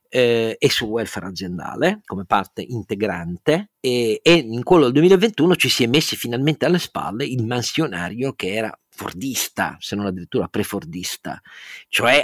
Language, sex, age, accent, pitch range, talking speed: Italian, male, 40-59, native, 110-165 Hz, 150 wpm